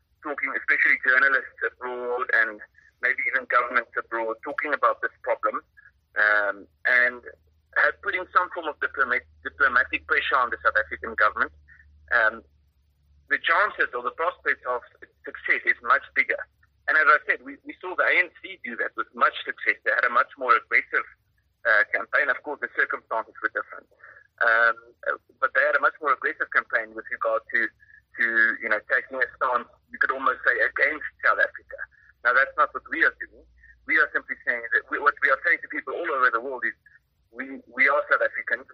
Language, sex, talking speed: English, male, 185 wpm